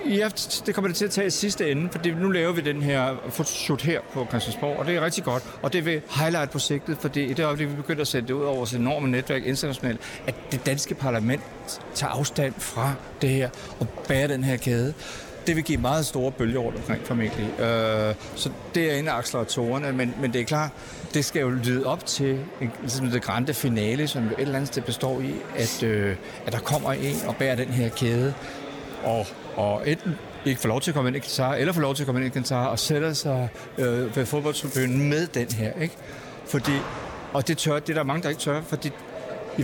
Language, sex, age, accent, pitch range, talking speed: Danish, male, 60-79, native, 120-145 Hz, 225 wpm